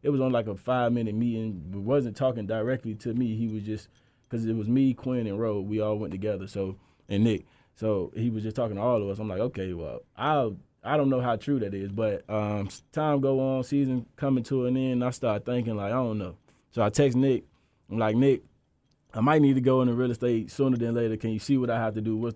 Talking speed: 260 wpm